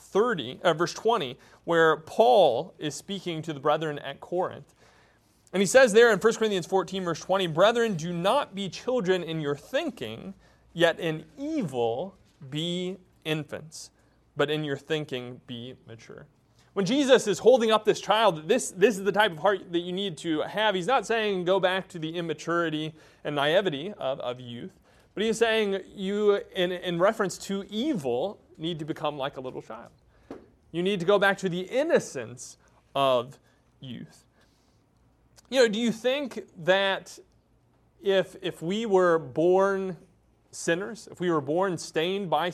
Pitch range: 155-200 Hz